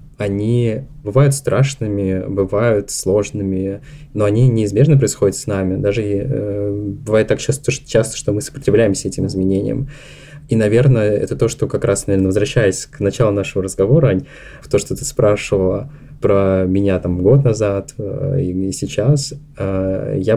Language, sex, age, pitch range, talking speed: Russian, male, 20-39, 100-140 Hz, 130 wpm